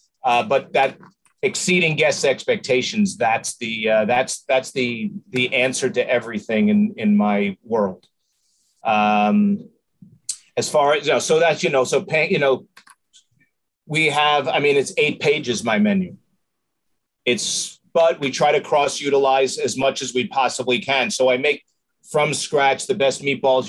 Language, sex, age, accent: English, male, 40-59, American